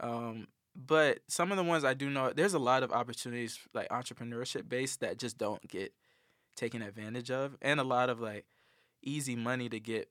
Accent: American